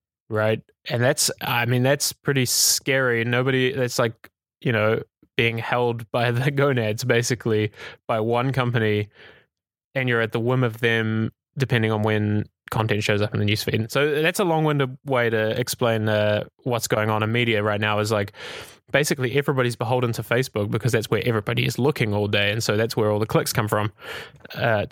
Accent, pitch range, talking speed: Australian, 110-130 Hz, 195 wpm